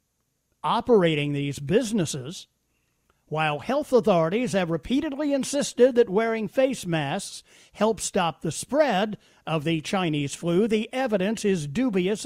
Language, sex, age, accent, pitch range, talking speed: English, male, 50-69, American, 160-225 Hz, 120 wpm